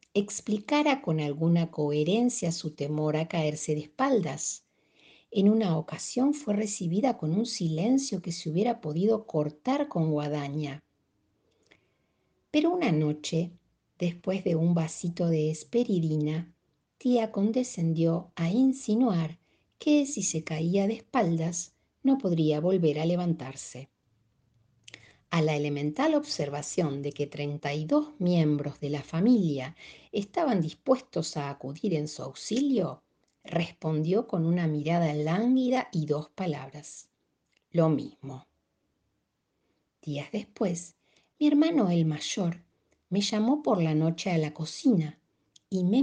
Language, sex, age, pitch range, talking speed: Spanish, female, 50-69, 155-210 Hz, 120 wpm